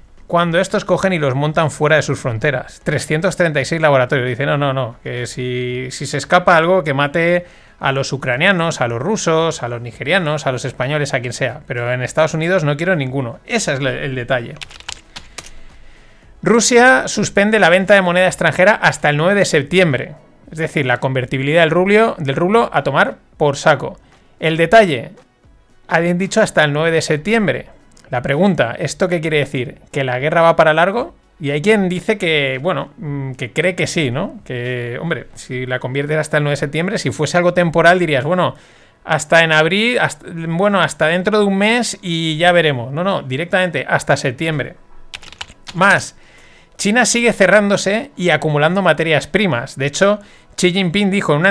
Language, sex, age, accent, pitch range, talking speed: Spanish, male, 30-49, Spanish, 140-185 Hz, 180 wpm